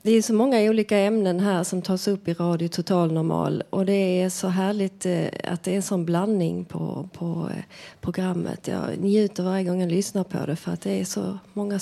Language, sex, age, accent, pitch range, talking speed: Swedish, female, 30-49, native, 180-210 Hz, 225 wpm